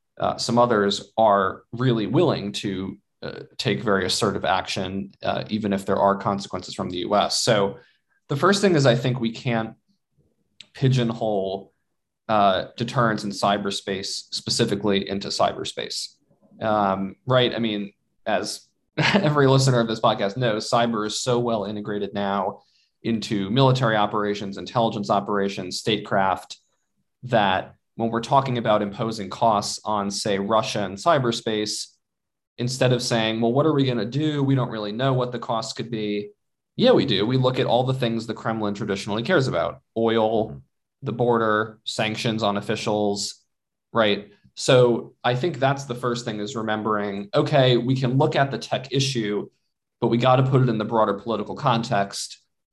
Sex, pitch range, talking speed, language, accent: male, 105-125 Hz, 160 wpm, English, American